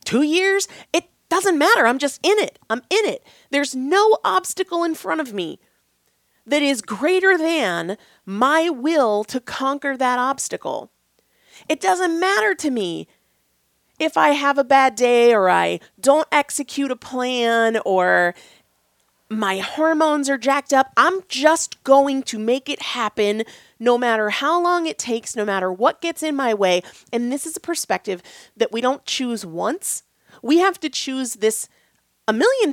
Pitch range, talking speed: 230-335 Hz, 165 wpm